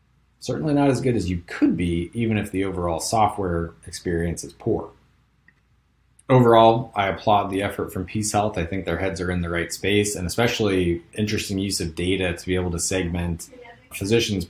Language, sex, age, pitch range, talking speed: English, male, 30-49, 90-125 Hz, 185 wpm